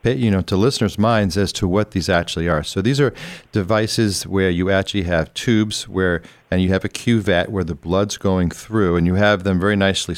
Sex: male